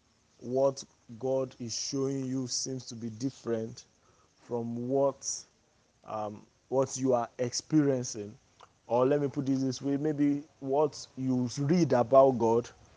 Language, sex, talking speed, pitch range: English, male, 135 wpm, 125-140 Hz